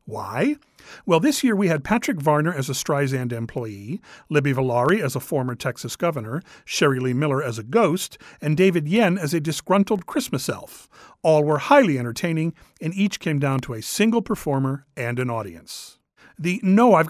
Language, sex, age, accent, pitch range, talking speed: English, male, 40-59, American, 135-195 Hz, 180 wpm